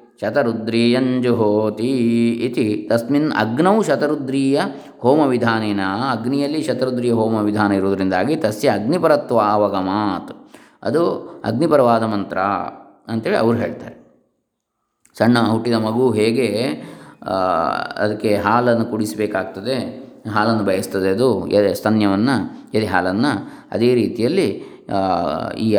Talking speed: 85 wpm